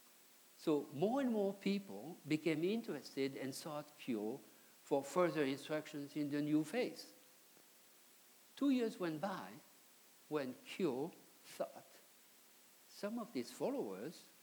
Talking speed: 115 wpm